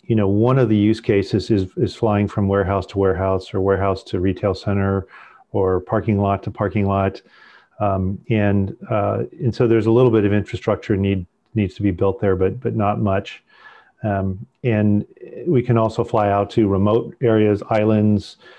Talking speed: 185 wpm